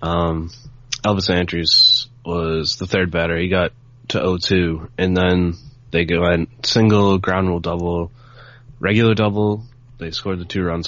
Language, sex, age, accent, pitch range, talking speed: English, male, 20-39, American, 85-120 Hz, 150 wpm